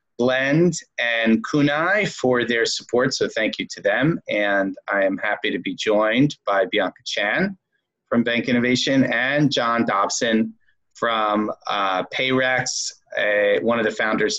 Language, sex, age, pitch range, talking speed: English, male, 30-49, 110-130 Hz, 145 wpm